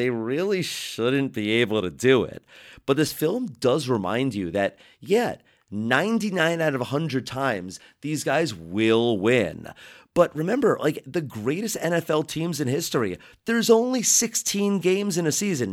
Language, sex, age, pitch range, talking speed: English, male, 30-49, 110-155 Hz, 160 wpm